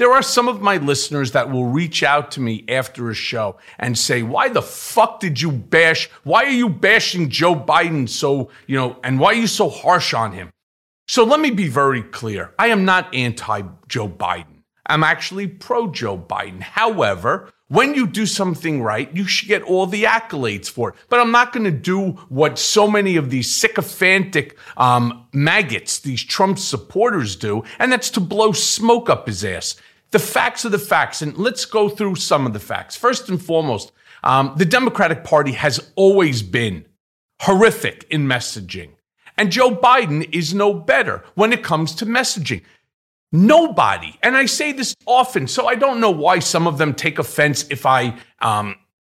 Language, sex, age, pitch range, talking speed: English, male, 40-59, 130-215 Hz, 185 wpm